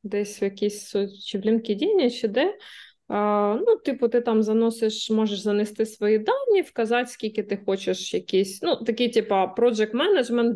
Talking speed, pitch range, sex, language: 155 wpm, 205-245 Hz, female, Russian